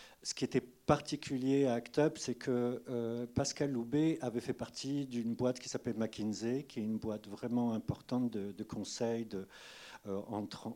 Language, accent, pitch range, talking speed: French, French, 110-130 Hz, 180 wpm